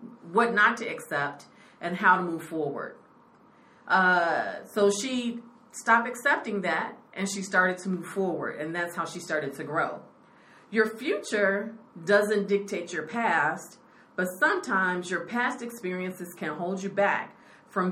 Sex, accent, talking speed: female, American, 145 wpm